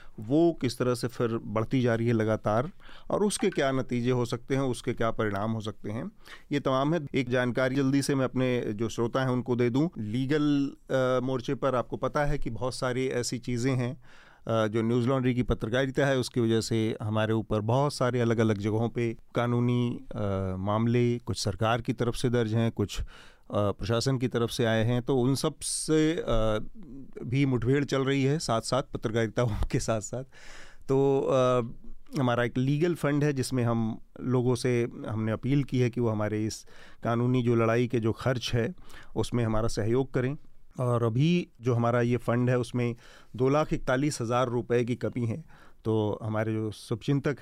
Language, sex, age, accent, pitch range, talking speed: Hindi, male, 40-59, native, 115-130 Hz, 185 wpm